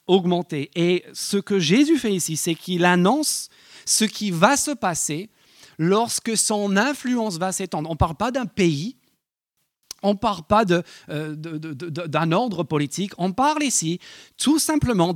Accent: French